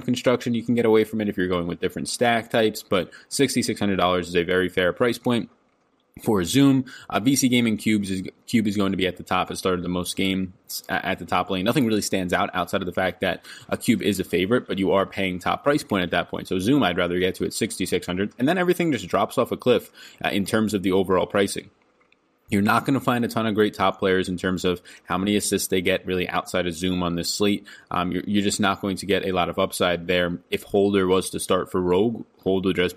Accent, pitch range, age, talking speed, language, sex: American, 90-110 Hz, 20-39, 260 wpm, English, male